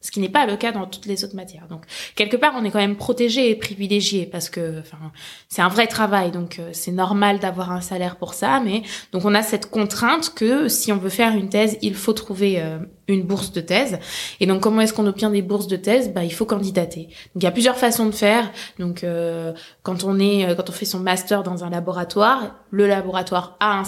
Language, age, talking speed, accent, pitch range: French, 20-39, 245 wpm, French, 180-215 Hz